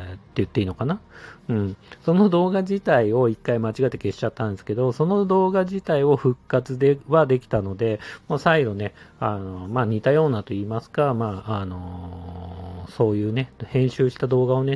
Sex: male